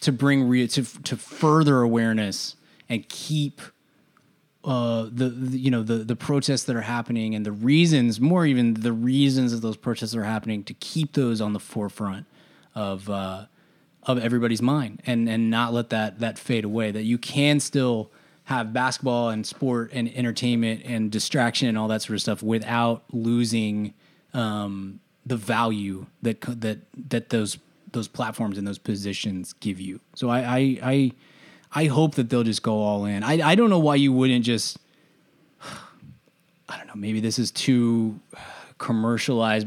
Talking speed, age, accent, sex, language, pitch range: 170 wpm, 20-39, American, male, English, 110-130 Hz